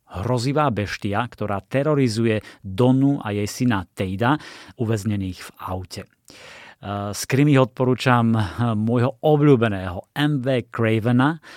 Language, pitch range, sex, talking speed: Slovak, 105-130 Hz, male, 100 wpm